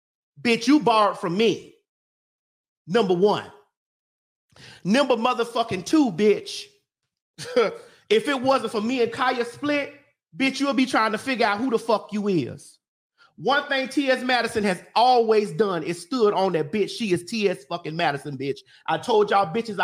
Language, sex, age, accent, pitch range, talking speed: English, male, 30-49, American, 170-235 Hz, 160 wpm